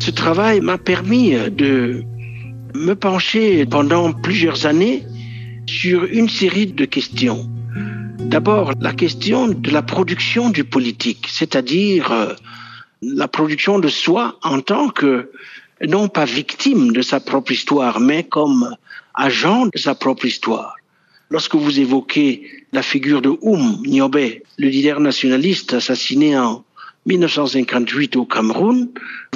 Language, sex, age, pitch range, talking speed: French, male, 60-79, 140-220 Hz, 125 wpm